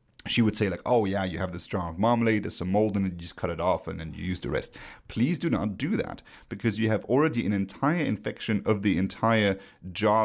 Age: 30-49